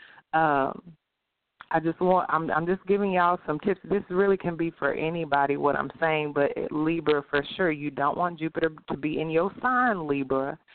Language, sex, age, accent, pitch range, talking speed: English, female, 30-49, American, 145-180 Hz, 190 wpm